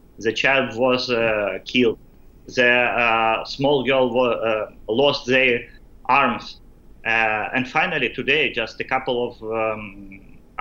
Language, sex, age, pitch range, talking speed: English, male, 30-49, 115-140 Hz, 130 wpm